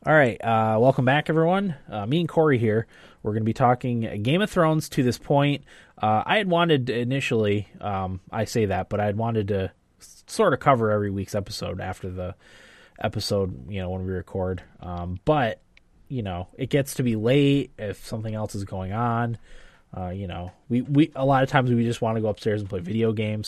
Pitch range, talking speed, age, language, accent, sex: 95-130 Hz, 215 wpm, 20-39, English, American, male